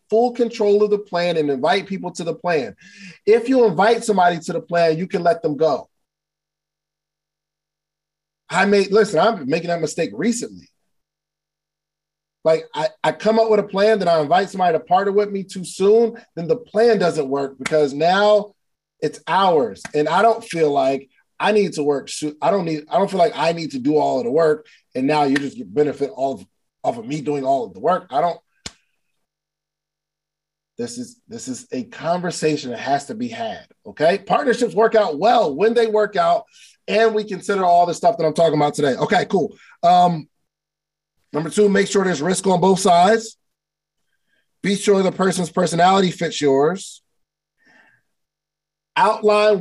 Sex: male